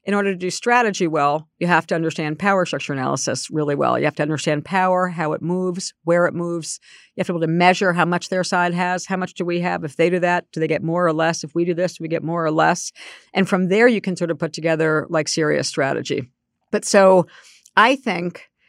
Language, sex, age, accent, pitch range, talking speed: English, female, 50-69, American, 160-190 Hz, 255 wpm